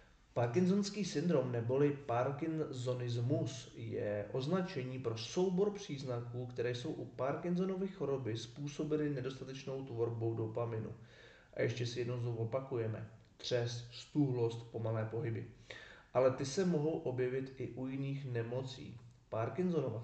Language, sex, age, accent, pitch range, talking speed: Czech, male, 30-49, native, 115-140 Hz, 115 wpm